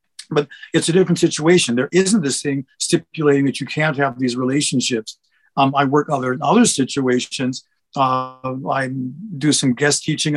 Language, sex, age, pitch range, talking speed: English, male, 50-69, 130-155 Hz, 170 wpm